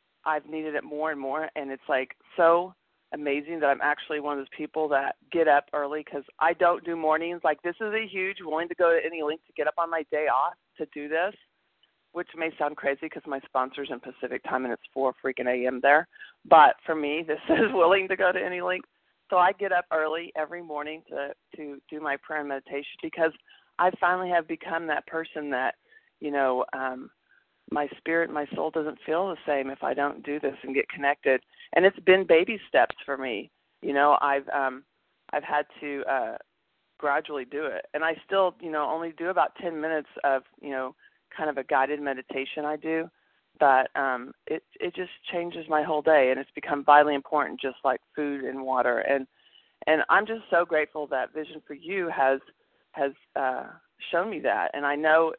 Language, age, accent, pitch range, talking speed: English, 40-59, American, 140-165 Hz, 210 wpm